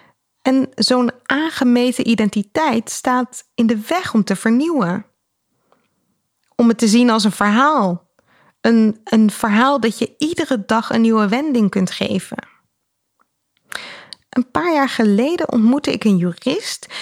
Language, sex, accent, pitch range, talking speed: Dutch, female, Dutch, 195-250 Hz, 135 wpm